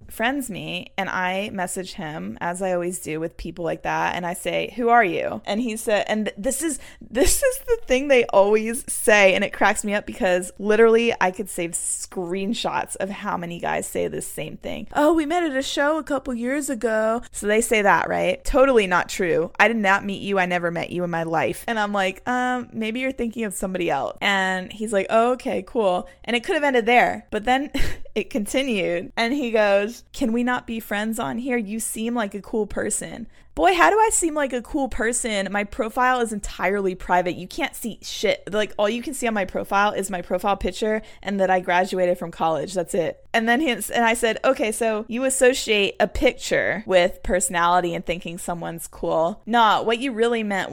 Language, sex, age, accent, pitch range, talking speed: English, female, 20-39, American, 185-240 Hz, 220 wpm